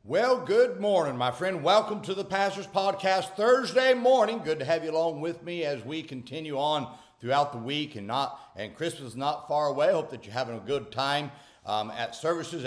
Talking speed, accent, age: 205 wpm, American, 60-79